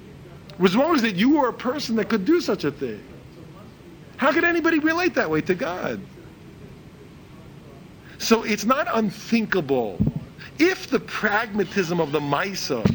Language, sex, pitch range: English, male, 165-260 Hz